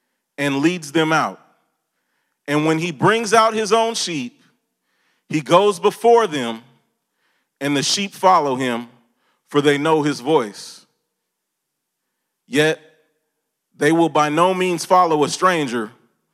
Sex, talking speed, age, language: male, 130 wpm, 30-49, English